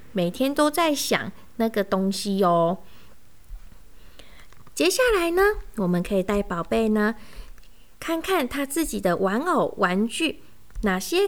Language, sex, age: Chinese, female, 20-39